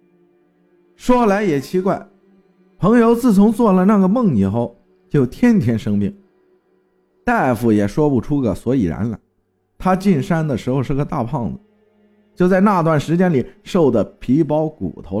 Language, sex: Chinese, male